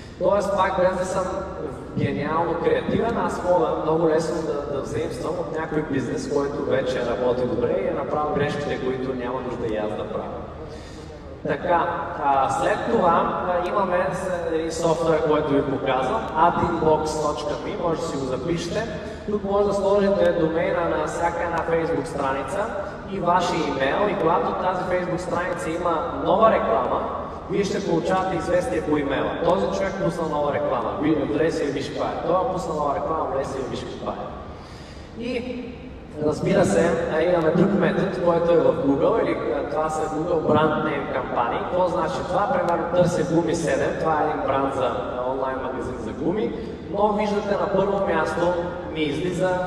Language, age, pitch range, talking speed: Bulgarian, 20-39, 150-185 Hz, 155 wpm